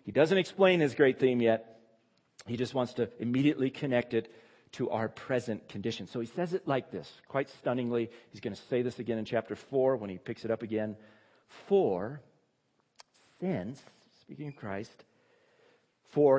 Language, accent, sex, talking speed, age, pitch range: English, American, male, 170 wpm, 50-69, 110-140 Hz